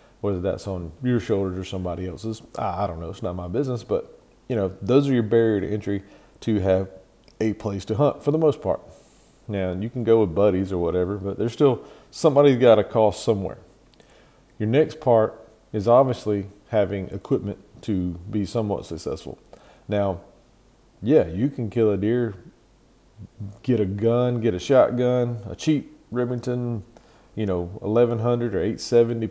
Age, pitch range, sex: 40-59, 95-120 Hz, male